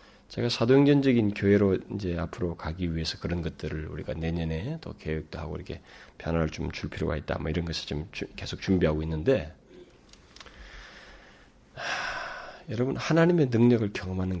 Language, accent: Korean, native